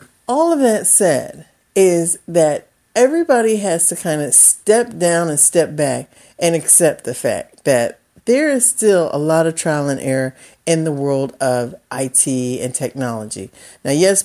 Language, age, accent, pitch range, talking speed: English, 50-69, American, 135-185 Hz, 165 wpm